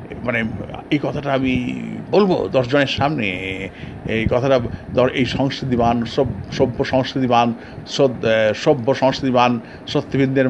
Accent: native